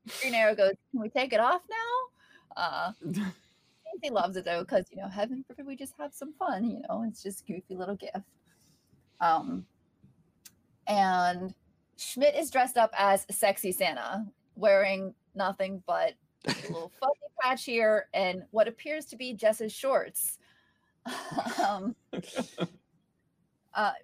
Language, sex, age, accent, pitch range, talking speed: English, female, 30-49, American, 185-255 Hz, 145 wpm